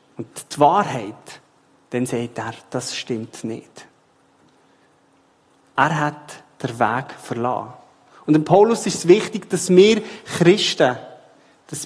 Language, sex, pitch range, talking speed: German, male, 135-180 Hz, 115 wpm